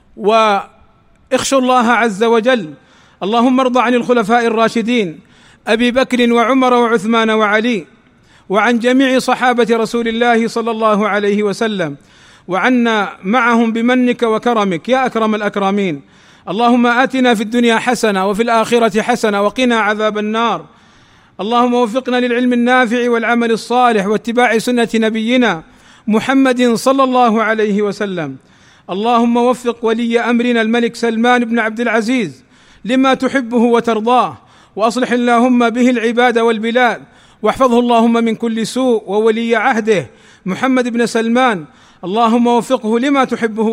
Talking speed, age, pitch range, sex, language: 120 wpm, 40-59, 220-245 Hz, male, Arabic